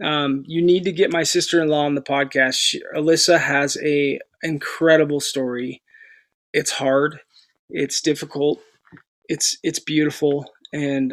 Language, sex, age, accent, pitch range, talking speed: English, male, 20-39, American, 140-170 Hz, 130 wpm